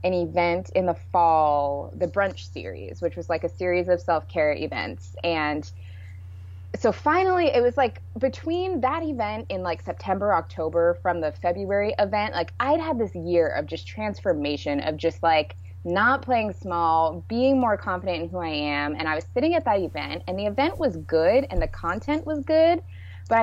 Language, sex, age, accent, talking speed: English, female, 20-39, American, 185 wpm